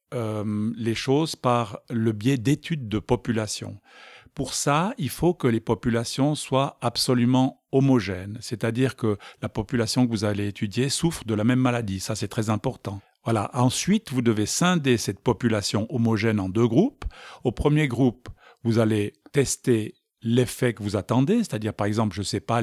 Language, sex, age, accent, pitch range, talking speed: French, male, 50-69, French, 110-135 Hz, 170 wpm